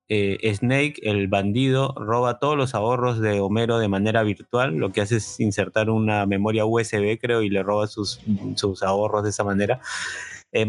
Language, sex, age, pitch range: Spanish, male, 30-49, 105-140 Hz